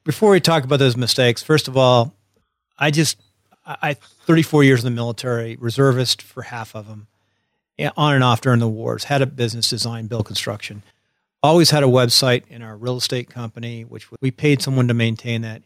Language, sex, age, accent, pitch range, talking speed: English, male, 50-69, American, 115-135 Hz, 190 wpm